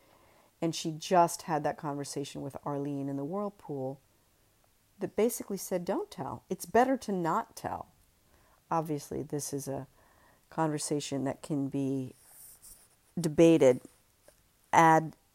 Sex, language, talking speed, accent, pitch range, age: female, English, 120 wpm, American, 145-200 Hz, 50-69